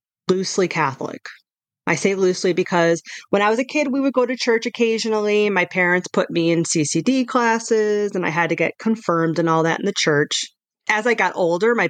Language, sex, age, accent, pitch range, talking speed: English, female, 30-49, American, 160-195 Hz, 205 wpm